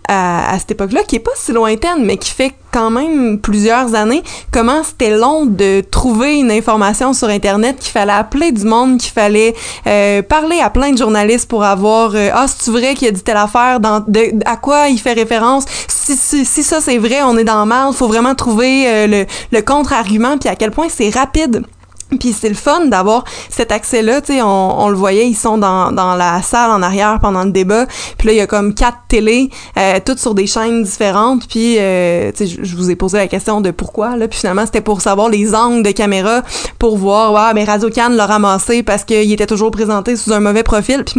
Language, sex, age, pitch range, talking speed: French, female, 20-39, 205-245 Hz, 235 wpm